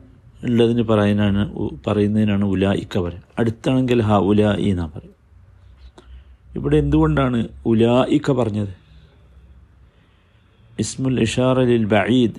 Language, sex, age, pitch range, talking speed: Malayalam, male, 50-69, 80-115 Hz, 90 wpm